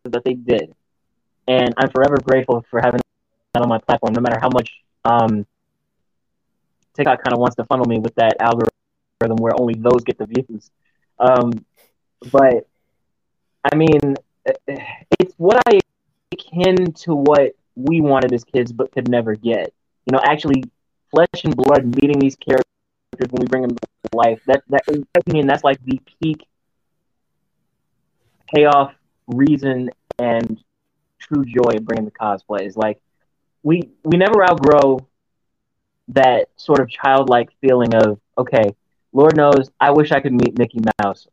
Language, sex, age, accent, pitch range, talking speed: English, male, 20-39, American, 120-140 Hz, 150 wpm